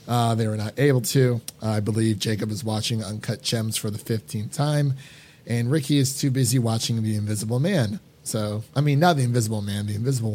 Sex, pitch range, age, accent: male, 115-155 Hz, 30-49, American